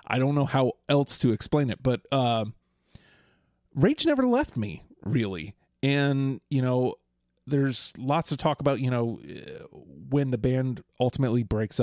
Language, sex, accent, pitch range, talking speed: English, male, American, 105-135 Hz, 155 wpm